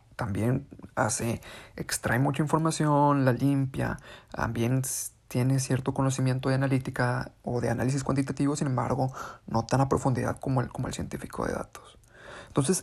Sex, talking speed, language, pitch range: male, 145 wpm, Spanish, 120-145 Hz